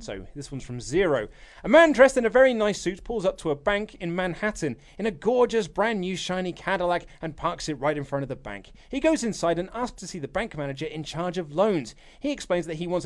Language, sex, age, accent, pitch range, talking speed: English, male, 30-49, British, 155-230 Hz, 255 wpm